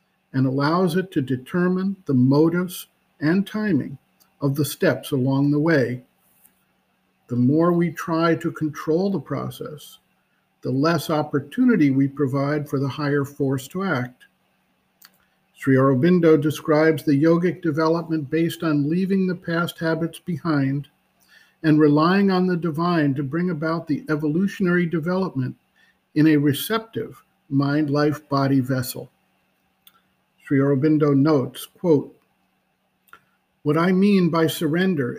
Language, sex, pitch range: English, male, 145-180 Hz